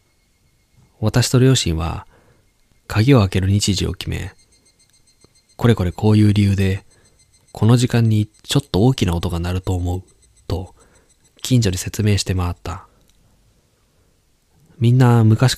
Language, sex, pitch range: Japanese, male, 90-110 Hz